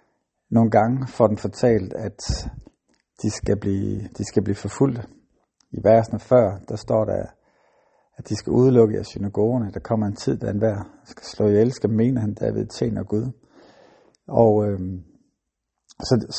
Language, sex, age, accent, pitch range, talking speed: Danish, male, 50-69, native, 105-120 Hz, 155 wpm